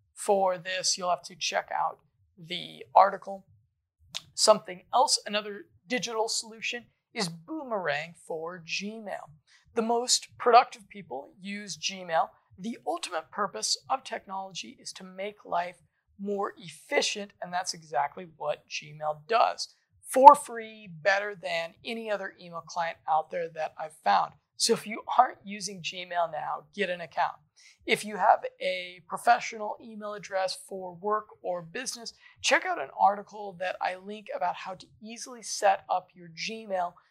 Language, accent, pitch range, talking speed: English, American, 170-215 Hz, 145 wpm